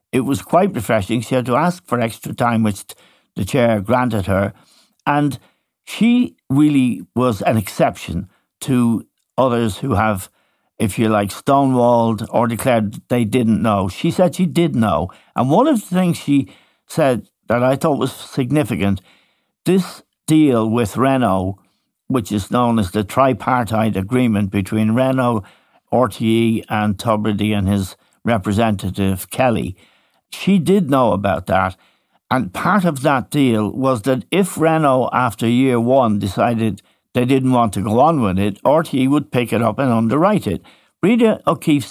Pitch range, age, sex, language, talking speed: 105-135 Hz, 60-79, male, English, 155 wpm